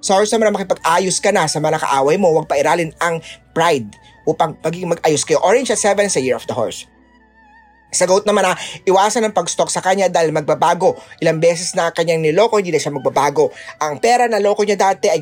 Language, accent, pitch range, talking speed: Filipino, native, 145-205 Hz, 195 wpm